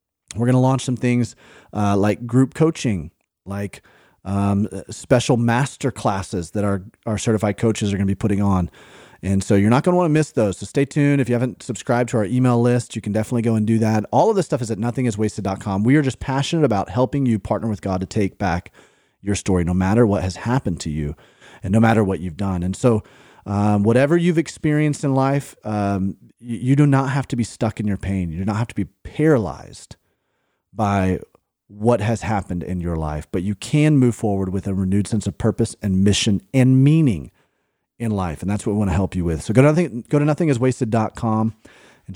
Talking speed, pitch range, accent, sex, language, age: 225 wpm, 100-130 Hz, American, male, English, 30-49